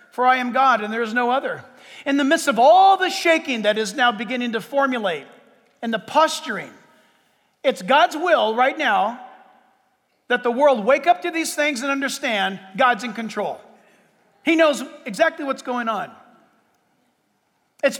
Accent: American